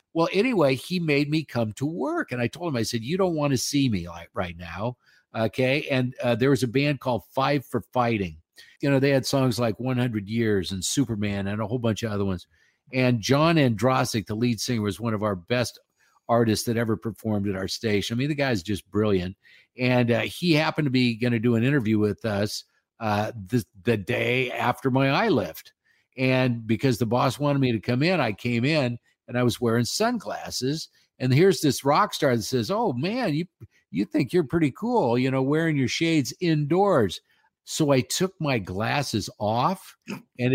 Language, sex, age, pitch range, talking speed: English, male, 50-69, 115-145 Hz, 210 wpm